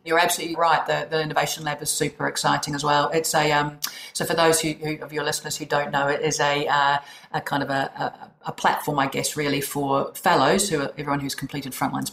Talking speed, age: 235 wpm, 40-59